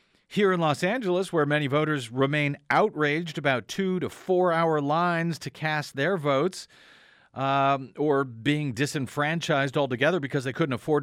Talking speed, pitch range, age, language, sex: 150 wpm, 120-165 Hz, 50-69, English, male